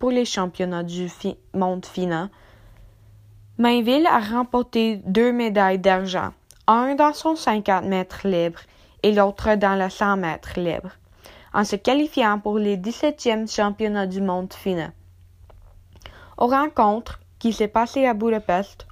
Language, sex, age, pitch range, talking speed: French, female, 10-29, 185-235 Hz, 135 wpm